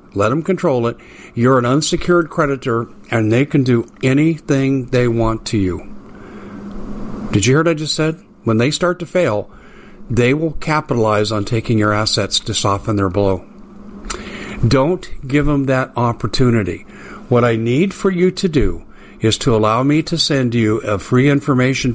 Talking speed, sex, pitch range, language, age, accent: 170 wpm, male, 110-140 Hz, English, 50-69, American